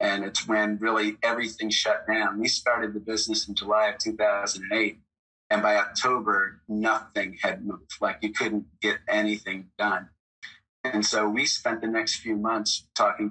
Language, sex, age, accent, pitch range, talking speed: English, male, 30-49, American, 100-110 Hz, 160 wpm